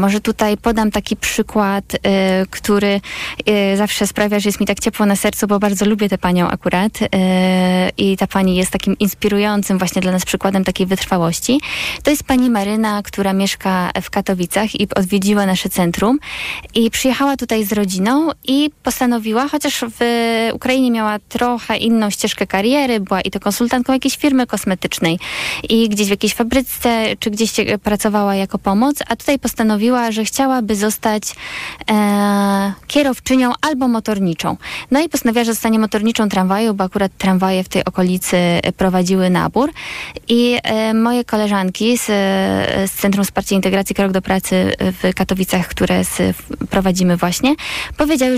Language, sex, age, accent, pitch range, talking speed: Polish, female, 20-39, native, 190-235 Hz, 145 wpm